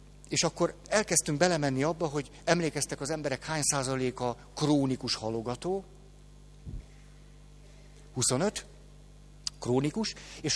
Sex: male